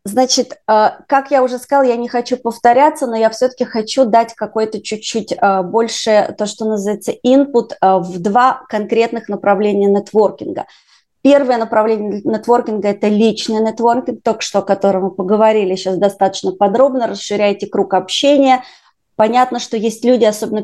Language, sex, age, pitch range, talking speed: Russian, female, 30-49, 200-245 Hz, 145 wpm